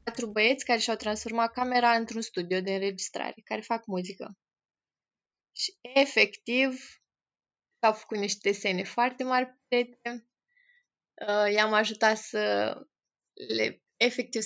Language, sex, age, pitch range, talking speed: Romanian, female, 20-39, 205-250 Hz, 115 wpm